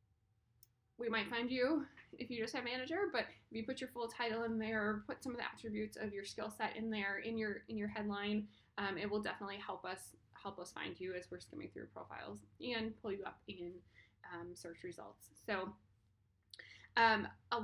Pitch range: 195-225 Hz